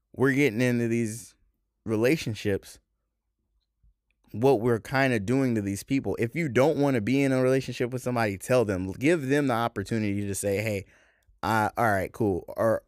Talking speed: 180 wpm